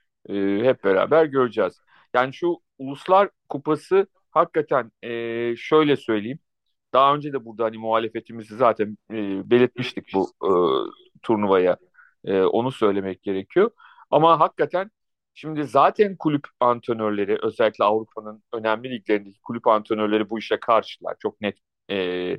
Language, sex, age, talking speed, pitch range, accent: Turkish, male, 40-59, 120 wpm, 110-150 Hz, native